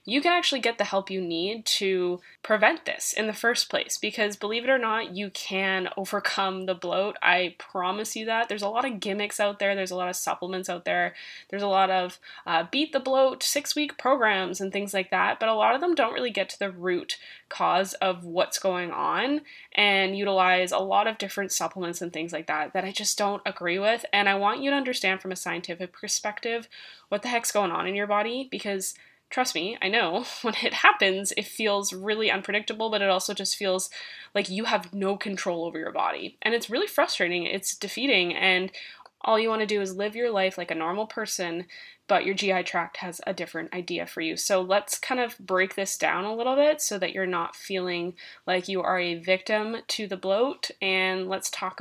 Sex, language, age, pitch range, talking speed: female, English, 10-29, 185-220 Hz, 220 wpm